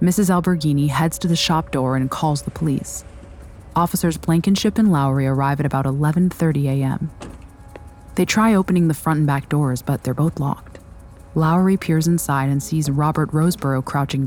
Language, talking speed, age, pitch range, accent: English, 170 wpm, 30-49, 135-170 Hz, American